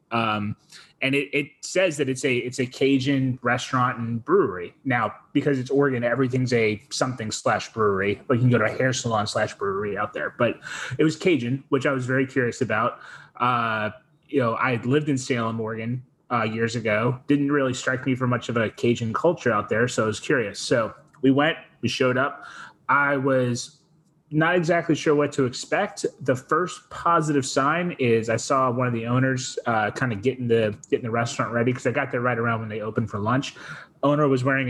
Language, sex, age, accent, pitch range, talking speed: English, male, 20-39, American, 115-140 Hz, 210 wpm